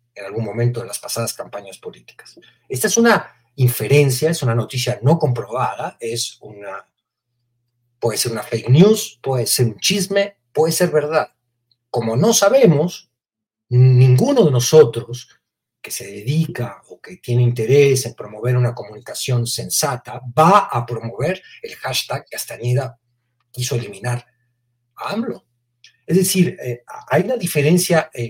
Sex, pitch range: male, 120-165 Hz